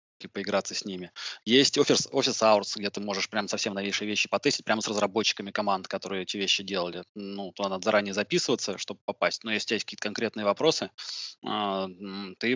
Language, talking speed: English, 180 wpm